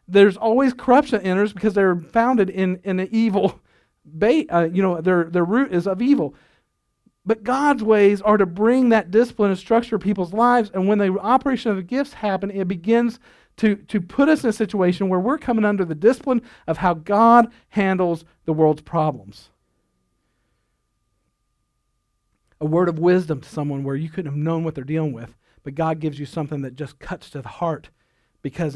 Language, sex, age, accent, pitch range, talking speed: English, male, 50-69, American, 160-210 Hz, 190 wpm